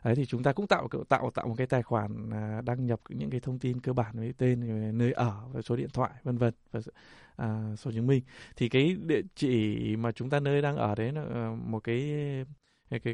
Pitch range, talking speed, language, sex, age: 115-135 Hz, 235 wpm, Vietnamese, male, 20-39